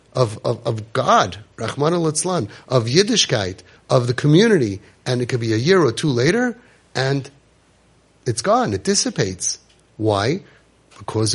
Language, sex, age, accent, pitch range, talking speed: English, male, 30-49, American, 105-145 Hz, 130 wpm